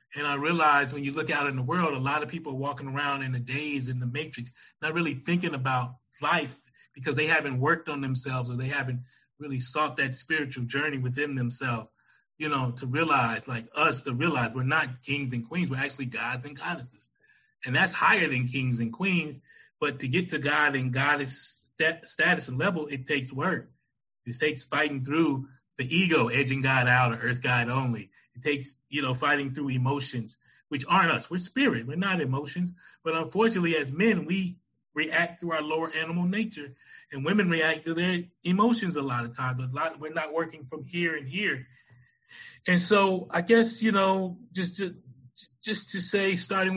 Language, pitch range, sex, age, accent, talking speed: English, 130-170 Hz, male, 30-49, American, 200 wpm